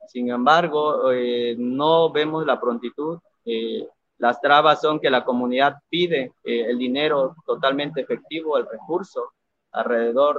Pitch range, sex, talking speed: 125-165 Hz, male, 135 wpm